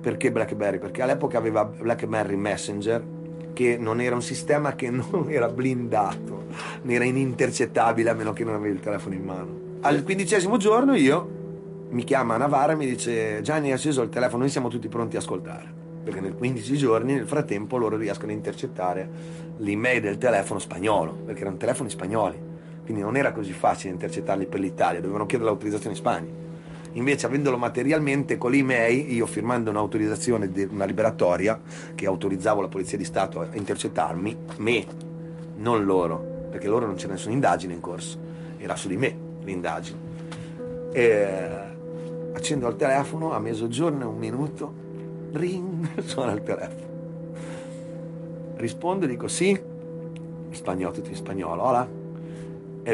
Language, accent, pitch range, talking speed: Italian, native, 110-165 Hz, 155 wpm